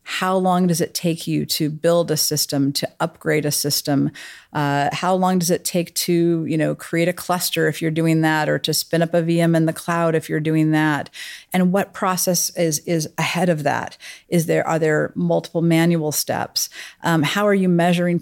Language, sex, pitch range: English, female, 155-175 Hz